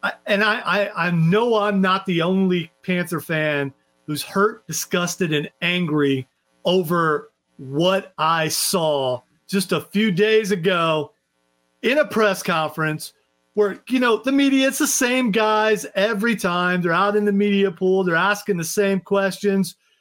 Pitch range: 160-220 Hz